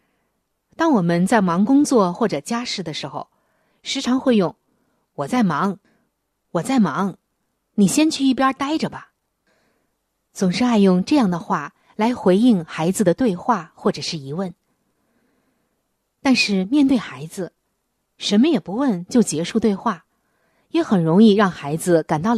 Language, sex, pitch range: Chinese, female, 175-255 Hz